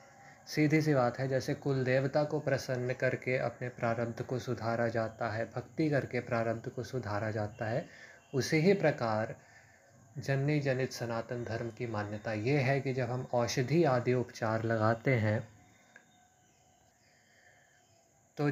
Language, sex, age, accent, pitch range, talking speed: Hindi, male, 20-39, native, 115-135 Hz, 140 wpm